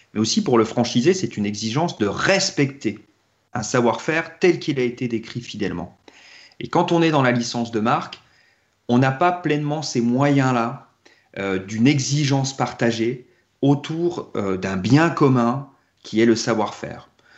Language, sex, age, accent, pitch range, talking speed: French, male, 40-59, French, 115-145 Hz, 155 wpm